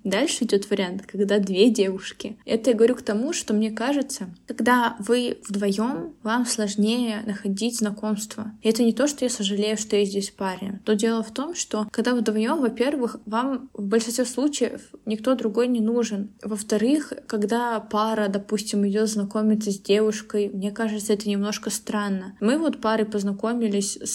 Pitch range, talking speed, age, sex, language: 205-230 Hz, 165 wpm, 20-39, female, Russian